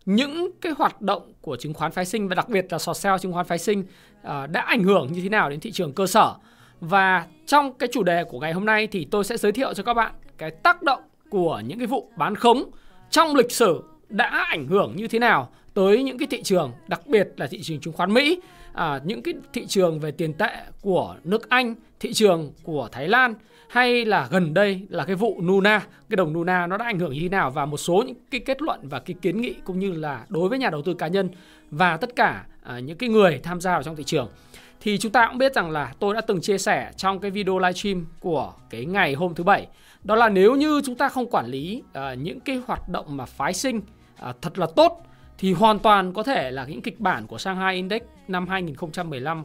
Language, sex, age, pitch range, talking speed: Vietnamese, male, 20-39, 175-230 Hz, 245 wpm